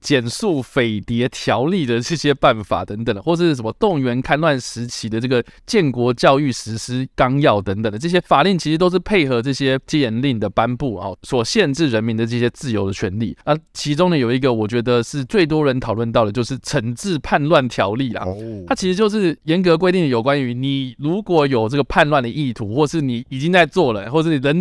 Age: 20-39